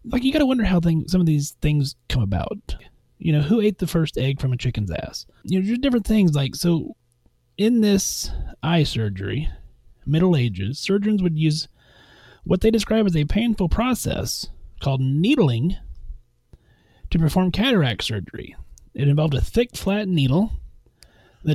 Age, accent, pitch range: 30-49, American, 125-180 Hz